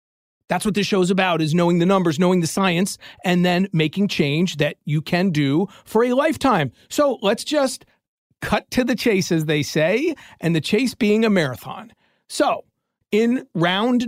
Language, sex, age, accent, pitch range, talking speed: English, male, 40-59, American, 175-220 Hz, 185 wpm